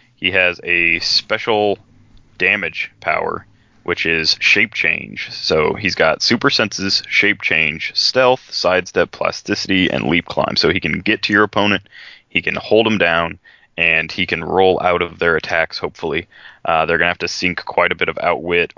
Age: 20-39